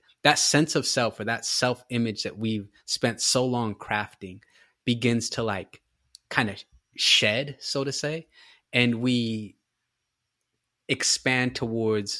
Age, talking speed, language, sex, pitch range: 20-39, 130 wpm, English, male, 105-125 Hz